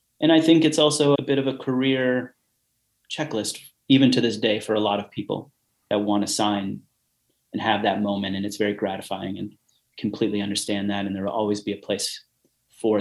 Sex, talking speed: male, 205 wpm